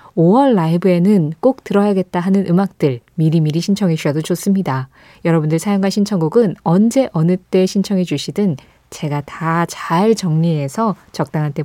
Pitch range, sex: 160-220 Hz, female